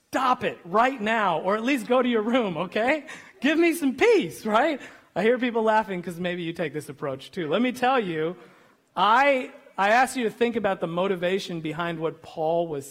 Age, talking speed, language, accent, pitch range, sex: 40-59, 210 wpm, English, American, 155-220 Hz, male